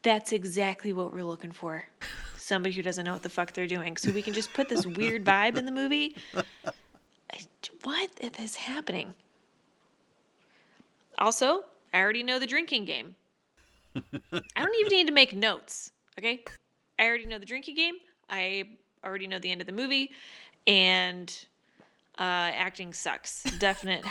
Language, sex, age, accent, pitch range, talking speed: English, female, 20-39, American, 180-245 Hz, 155 wpm